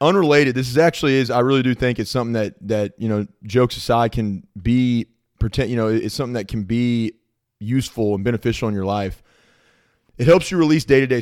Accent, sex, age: American, male, 30-49